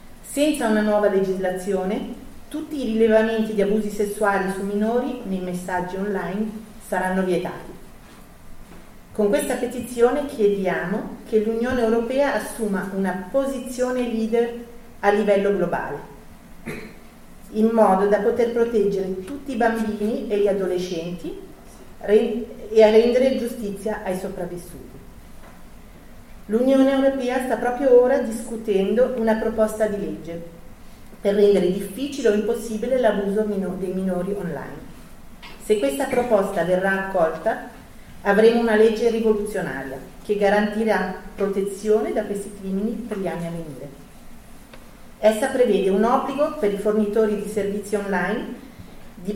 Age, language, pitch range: 40-59, Italian, 195-235 Hz